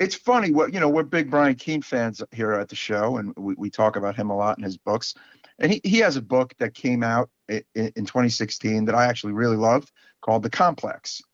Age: 50-69